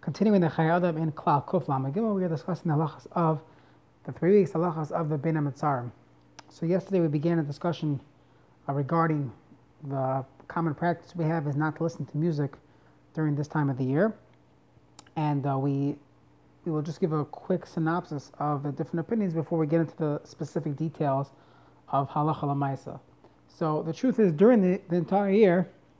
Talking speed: 180 wpm